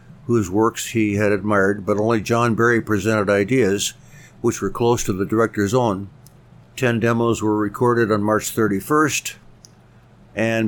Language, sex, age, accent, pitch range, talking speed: English, male, 60-79, American, 105-115 Hz, 145 wpm